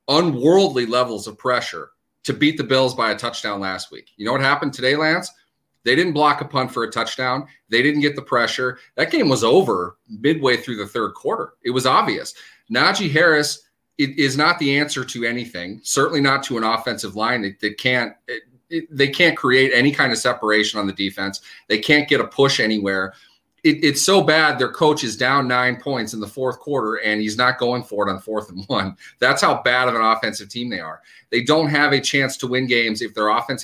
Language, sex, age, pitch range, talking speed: English, male, 30-49, 110-140 Hz, 210 wpm